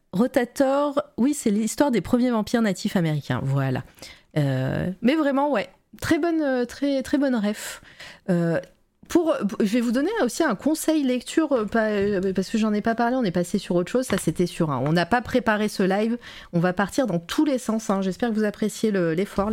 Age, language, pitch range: 30-49, French, 185-255 Hz